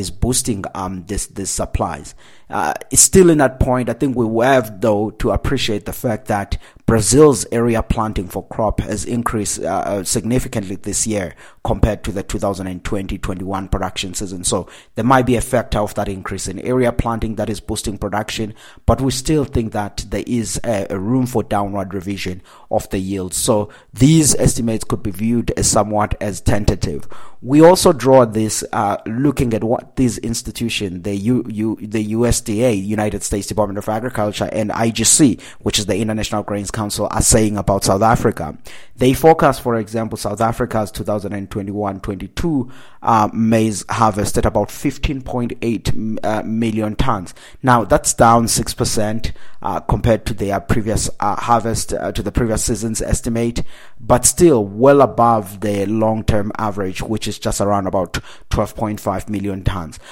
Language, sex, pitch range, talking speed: English, male, 100-120 Hz, 165 wpm